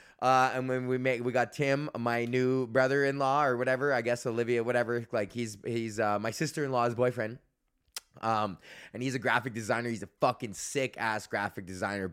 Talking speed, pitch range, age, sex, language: 205 wpm, 120-155 Hz, 20-39, male, English